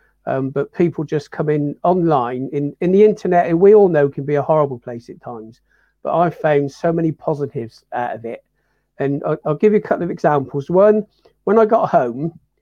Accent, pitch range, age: British, 140-175 Hz, 40-59